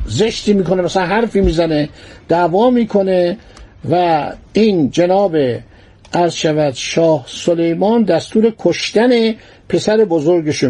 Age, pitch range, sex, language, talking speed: 60-79, 165-210 Hz, male, Persian, 95 wpm